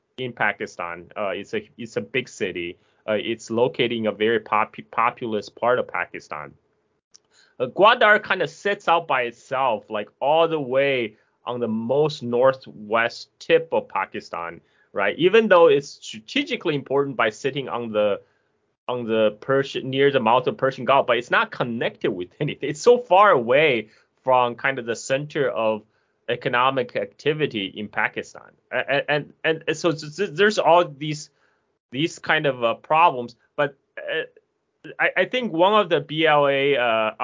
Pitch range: 110-165 Hz